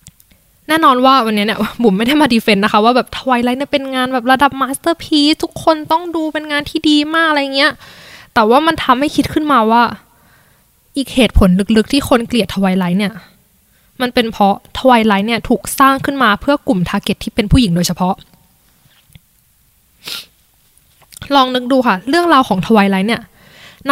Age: 10-29